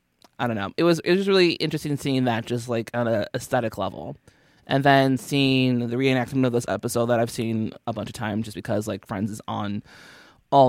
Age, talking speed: 20-39, 220 wpm